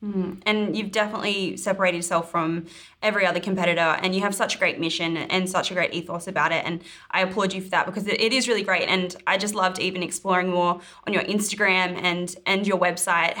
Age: 20-39